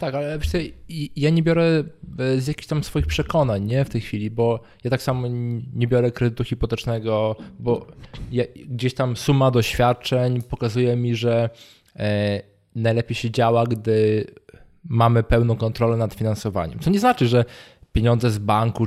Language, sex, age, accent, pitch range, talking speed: Polish, male, 20-39, native, 110-125 Hz, 145 wpm